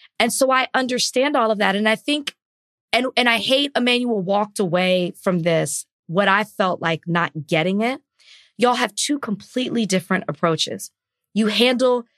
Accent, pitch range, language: American, 170-230 Hz, English